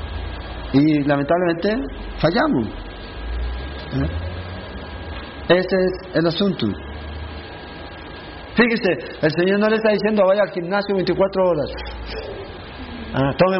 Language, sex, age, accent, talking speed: Spanish, male, 50-69, Mexican, 95 wpm